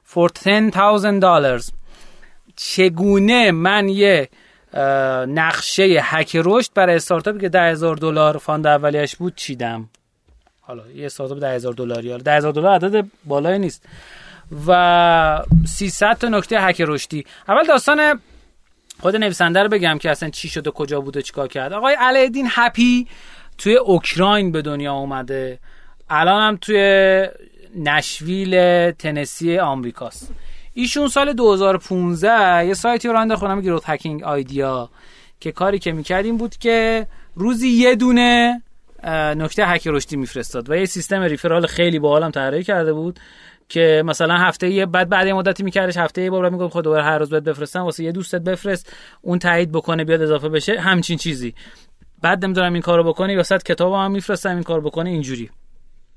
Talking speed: 145 wpm